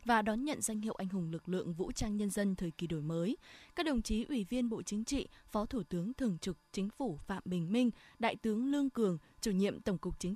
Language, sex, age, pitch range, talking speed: Vietnamese, female, 20-39, 185-245 Hz, 255 wpm